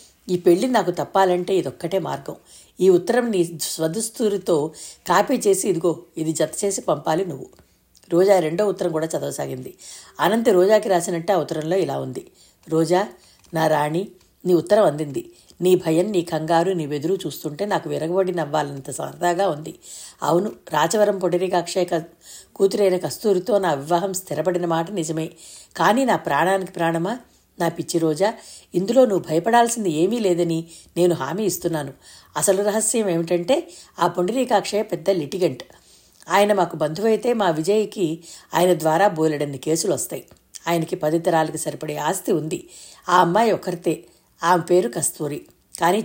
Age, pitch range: 60-79, 160-195 Hz